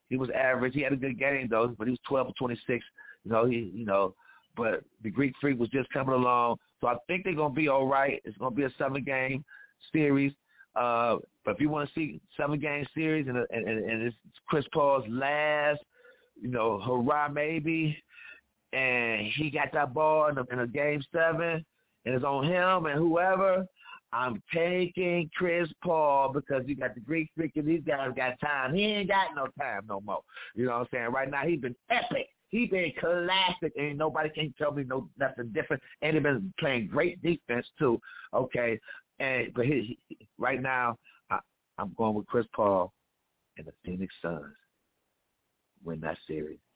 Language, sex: English, male